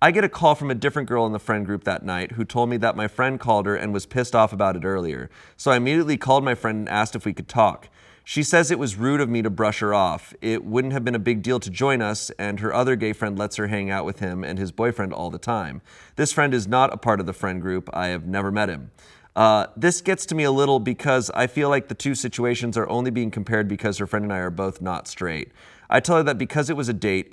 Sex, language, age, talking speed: male, English, 30-49, 285 wpm